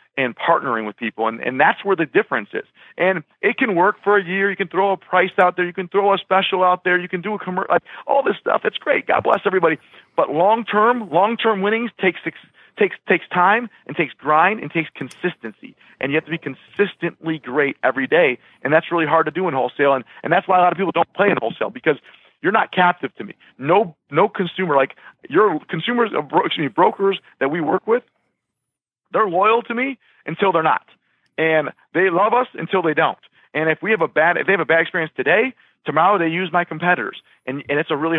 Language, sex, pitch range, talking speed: English, male, 150-195 Hz, 230 wpm